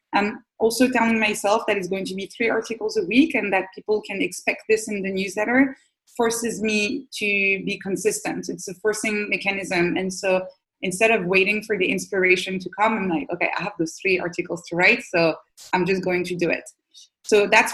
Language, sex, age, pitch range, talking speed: English, female, 20-39, 180-215 Hz, 205 wpm